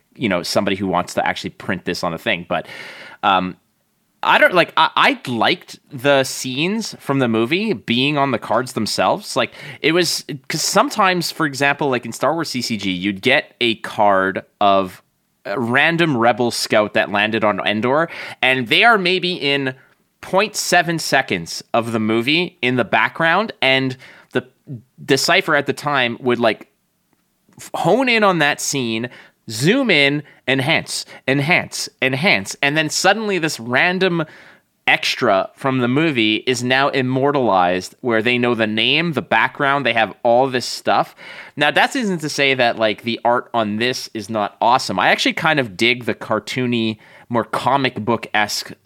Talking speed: 165 wpm